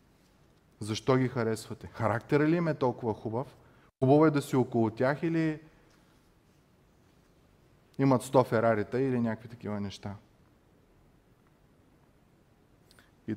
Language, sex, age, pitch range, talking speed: Bulgarian, male, 30-49, 110-145 Hz, 110 wpm